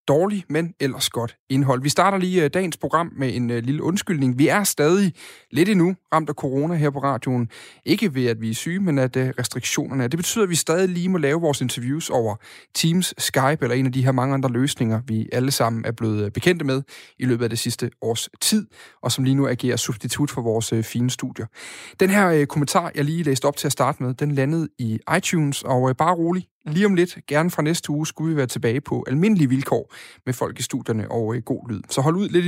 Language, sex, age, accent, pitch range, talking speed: Danish, male, 30-49, native, 120-160 Hz, 225 wpm